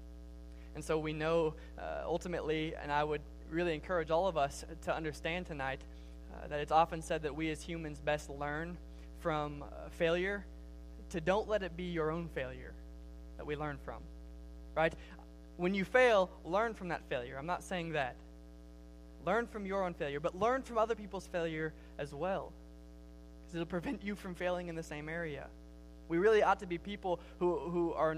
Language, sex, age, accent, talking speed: English, male, 20-39, American, 185 wpm